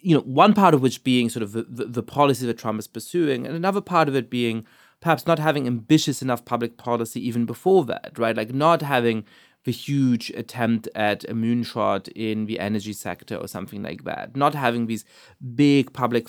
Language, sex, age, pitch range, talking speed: English, male, 20-39, 115-160 Hz, 205 wpm